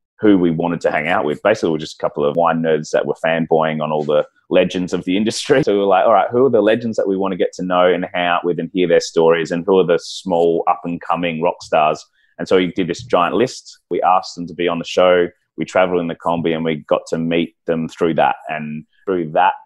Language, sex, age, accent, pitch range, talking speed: English, male, 30-49, Australian, 80-90 Hz, 275 wpm